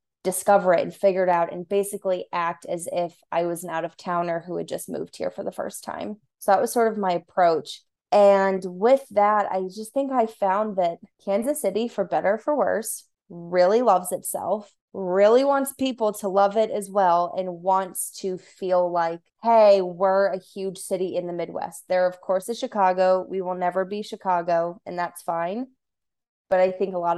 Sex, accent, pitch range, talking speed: female, American, 175-200 Hz, 195 wpm